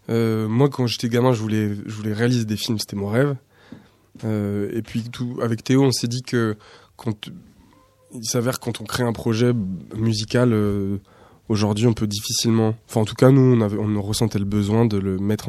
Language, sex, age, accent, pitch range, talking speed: French, male, 20-39, French, 100-120 Hz, 205 wpm